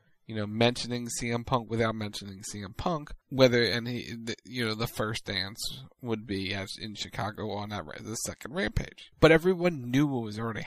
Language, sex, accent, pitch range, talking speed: English, male, American, 115-145 Hz, 180 wpm